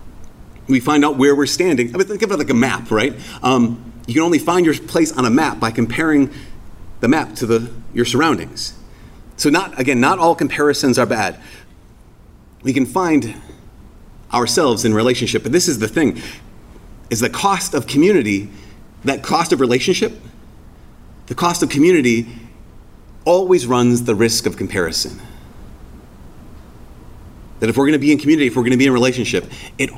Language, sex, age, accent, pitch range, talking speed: English, male, 30-49, American, 110-155 Hz, 175 wpm